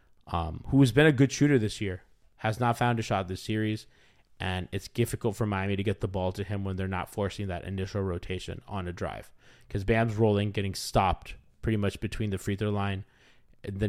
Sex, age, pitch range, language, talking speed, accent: male, 20-39, 95-125 Hz, English, 215 wpm, American